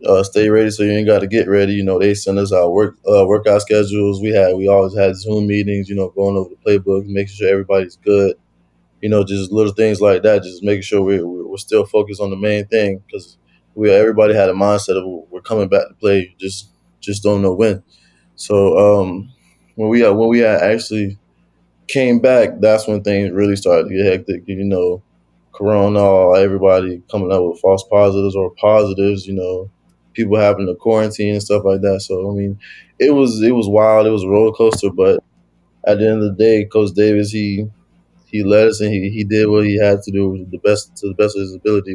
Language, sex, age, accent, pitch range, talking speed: English, male, 20-39, American, 95-105 Hz, 225 wpm